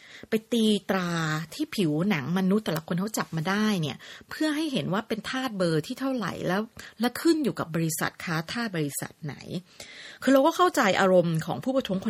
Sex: female